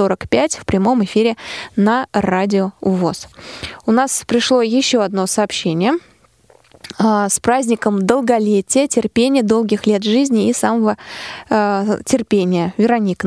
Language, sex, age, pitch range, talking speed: Russian, female, 20-39, 195-240 Hz, 115 wpm